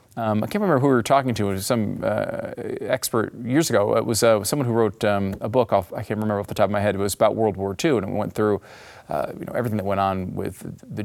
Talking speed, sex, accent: 295 wpm, male, American